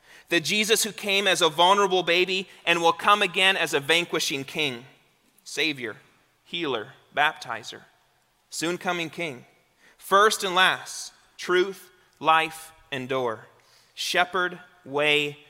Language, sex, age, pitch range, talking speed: English, male, 30-49, 155-195 Hz, 120 wpm